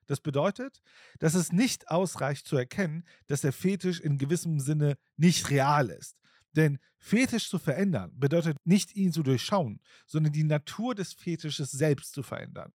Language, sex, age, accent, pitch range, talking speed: German, male, 40-59, German, 140-175 Hz, 160 wpm